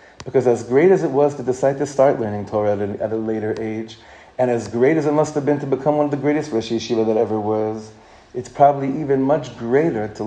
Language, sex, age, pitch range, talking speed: English, male, 30-49, 110-165 Hz, 250 wpm